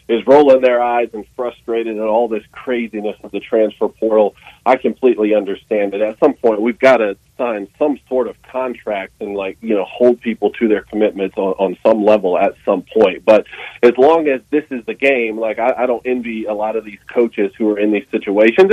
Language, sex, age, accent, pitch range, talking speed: English, male, 40-59, American, 105-130 Hz, 220 wpm